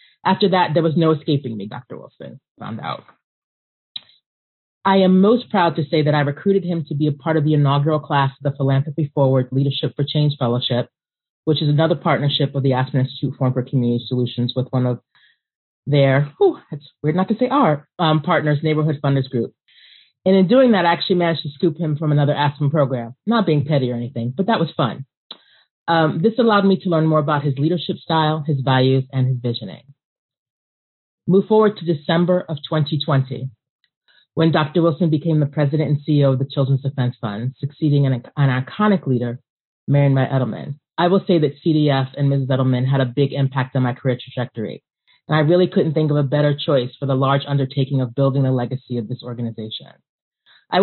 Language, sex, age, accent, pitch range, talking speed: English, female, 30-49, American, 130-165 Hz, 200 wpm